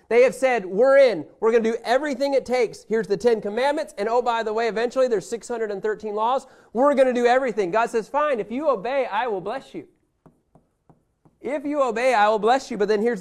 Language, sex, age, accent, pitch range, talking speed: English, male, 30-49, American, 205-260 Hz, 225 wpm